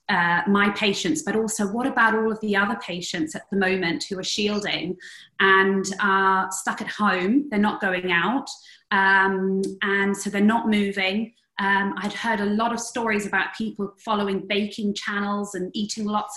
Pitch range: 190-220 Hz